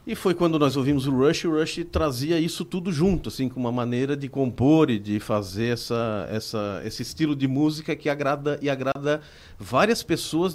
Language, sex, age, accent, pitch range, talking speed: Portuguese, male, 40-59, Brazilian, 115-150 Hz, 200 wpm